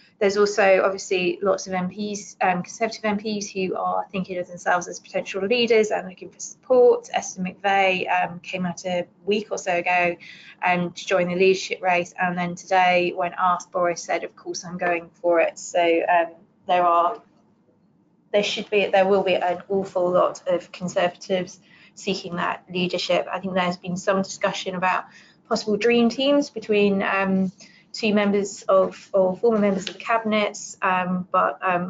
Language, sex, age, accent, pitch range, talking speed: English, female, 20-39, British, 180-210 Hz, 175 wpm